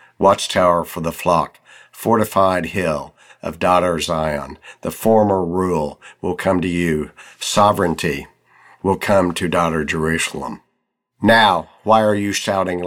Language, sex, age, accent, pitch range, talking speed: English, male, 60-79, American, 85-100 Hz, 125 wpm